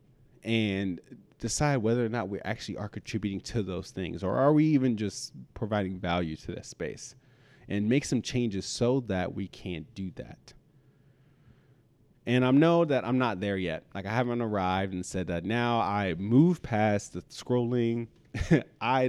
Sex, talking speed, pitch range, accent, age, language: male, 170 wpm, 95-125 Hz, American, 30-49, English